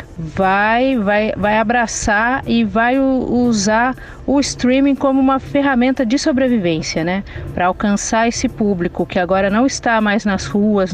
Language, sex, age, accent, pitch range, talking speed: English, female, 40-59, Brazilian, 185-235 Hz, 145 wpm